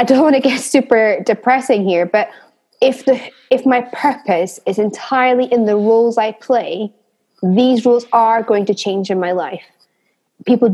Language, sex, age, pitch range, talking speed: English, female, 20-39, 200-255 Hz, 175 wpm